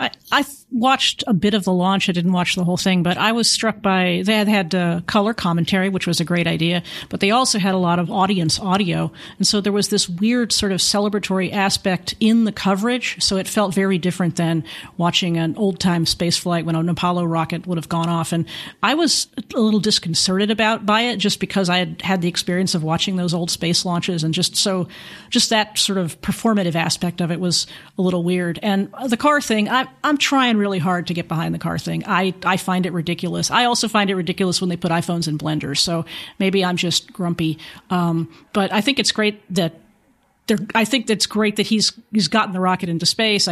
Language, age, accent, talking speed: English, 40-59, American, 225 wpm